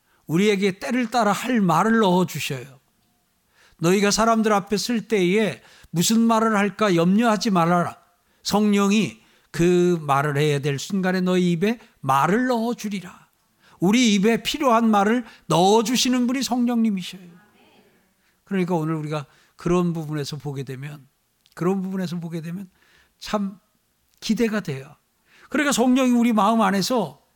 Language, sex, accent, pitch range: Korean, male, native, 150-210 Hz